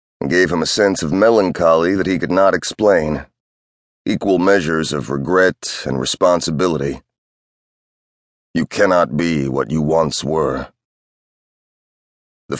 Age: 30-49